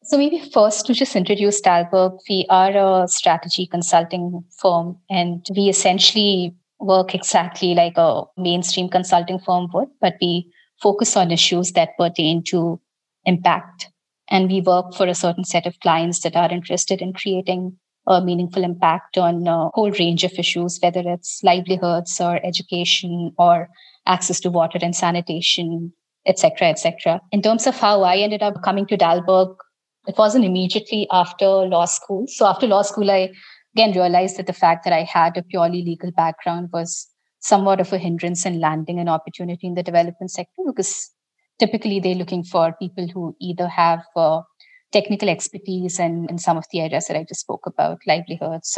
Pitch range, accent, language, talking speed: 170-190 Hz, Indian, English, 175 wpm